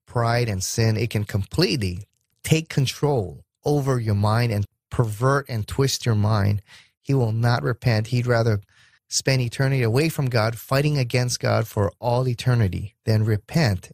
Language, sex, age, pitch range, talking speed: English, male, 30-49, 110-135 Hz, 155 wpm